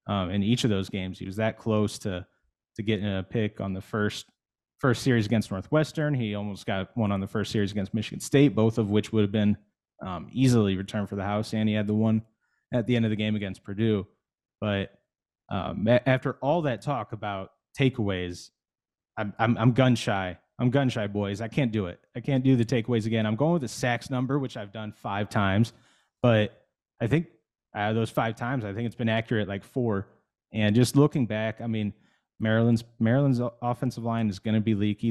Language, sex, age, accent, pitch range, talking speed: English, male, 20-39, American, 105-120 Hz, 215 wpm